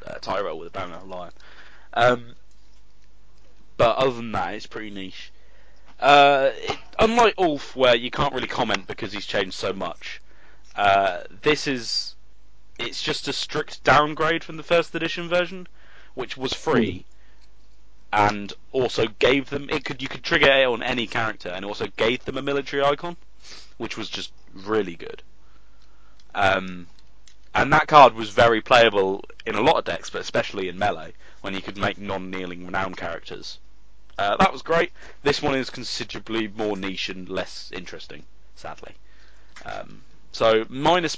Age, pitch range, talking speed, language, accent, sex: 30-49, 95-140 Hz, 165 wpm, English, British, male